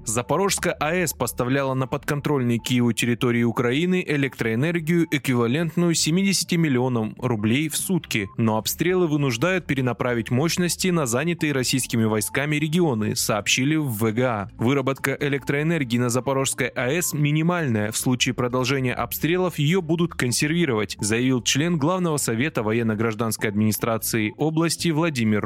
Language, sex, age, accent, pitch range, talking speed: Russian, male, 20-39, native, 120-160 Hz, 115 wpm